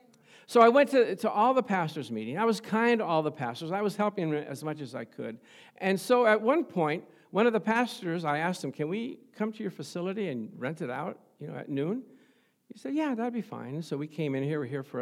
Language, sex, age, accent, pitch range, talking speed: English, male, 60-79, American, 155-235 Hz, 270 wpm